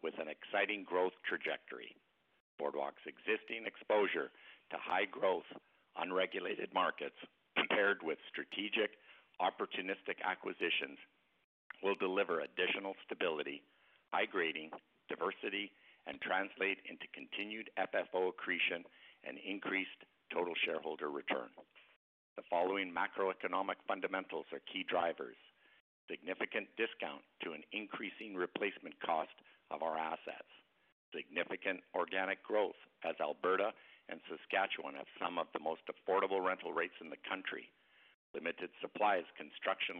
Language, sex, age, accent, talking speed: English, male, 60-79, American, 115 wpm